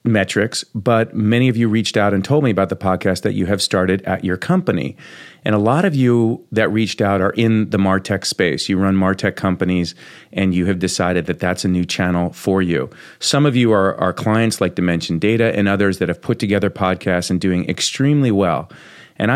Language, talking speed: English, 215 wpm